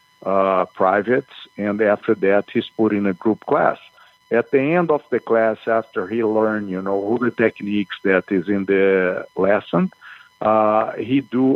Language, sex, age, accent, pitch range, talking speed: English, male, 50-69, Brazilian, 100-115 Hz, 170 wpm